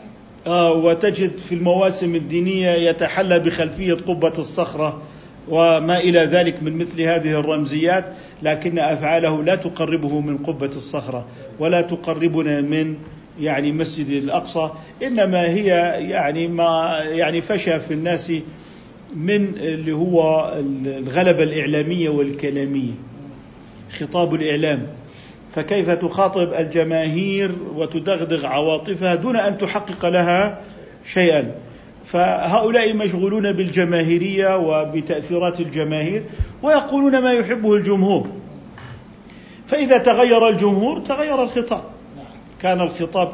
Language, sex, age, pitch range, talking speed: Arabic, male, 50-69, 155-195 Hz, 95 wpm